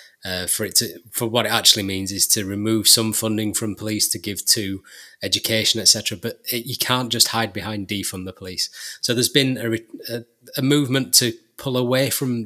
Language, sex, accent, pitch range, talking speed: English, male, British, 105-130 Hz, 200 wpm